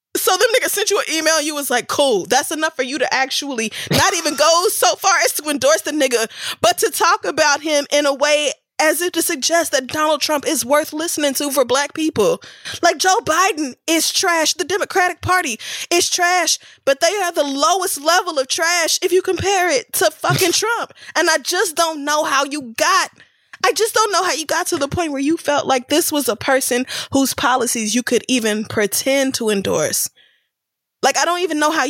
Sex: female